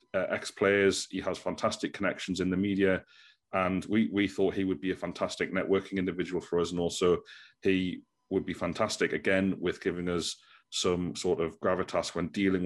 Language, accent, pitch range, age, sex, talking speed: English, British, 95-105 Hz, 30-49, male, 185 wpm